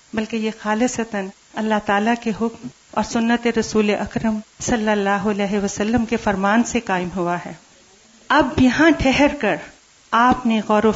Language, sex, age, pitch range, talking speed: Urdu, female, 40-59, 210-255 Hz, 160 wpm